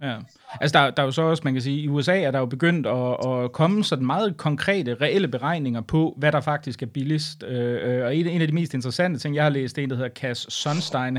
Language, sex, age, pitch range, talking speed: Danish, male, 30-49, 130-165 Hz, 270 wpm